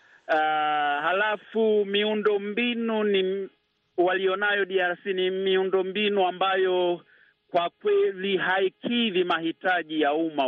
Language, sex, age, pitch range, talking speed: Swahili, male, 50-69, 165-205 Hz, 95 wpm